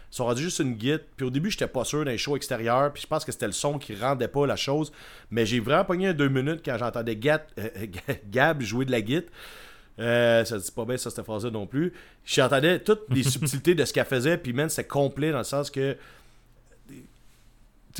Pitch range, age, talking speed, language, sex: 115-140 Hz, 30-49, 230 wpm, French, male